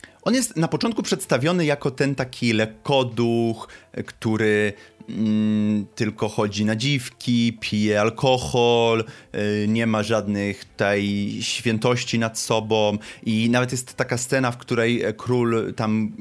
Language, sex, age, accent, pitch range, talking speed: Polish, male, 30-49, native, 100-120 Hz, 130 wpm